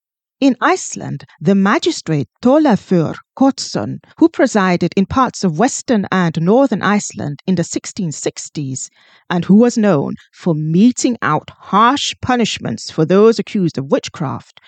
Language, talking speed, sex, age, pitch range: English, 130 wpm, female, 40-59, 175-245 Hz